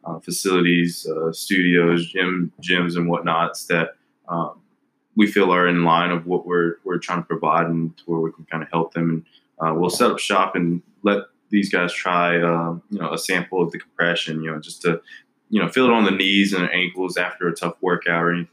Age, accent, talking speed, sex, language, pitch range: 20-39, American, 220 wpm, male, English, 85-90 Hz